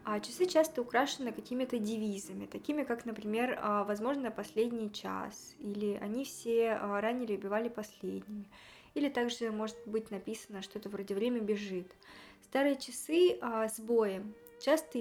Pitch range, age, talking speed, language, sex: 215-250 Hz, 20-39, 130 wpm, Russian, female